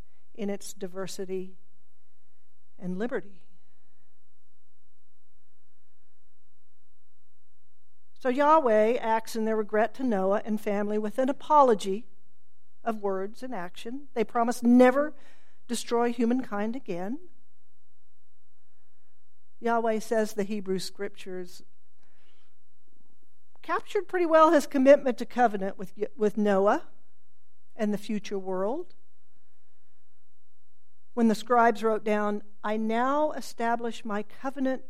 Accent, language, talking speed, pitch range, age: American, English, 95 wpm, 185-235 Hz, 50-69